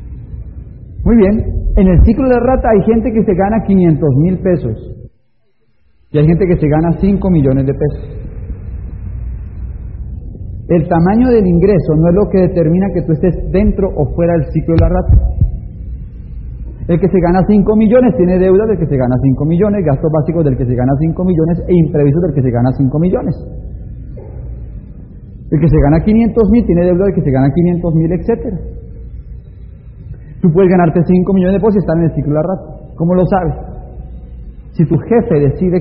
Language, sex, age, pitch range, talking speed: Spanish, male, 40-59, 135-185 Hz, 190 wpm